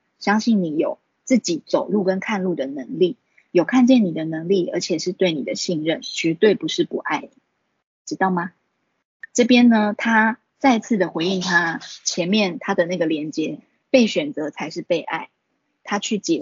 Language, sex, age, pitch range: Chinese, female, 20-39, 170-235 Hz